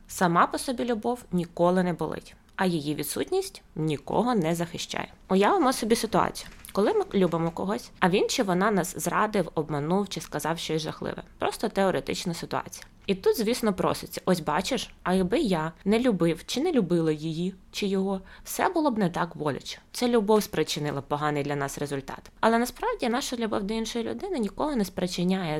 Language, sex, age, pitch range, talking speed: Ukrainian, female, 20-39, 160-220 Hz, 175 wpm